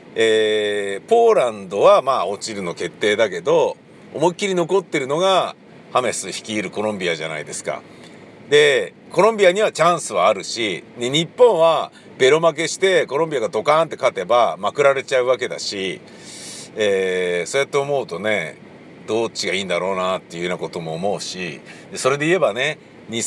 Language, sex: Japanese, male